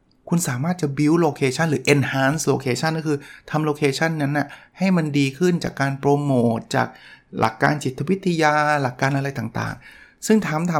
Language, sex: Thai, male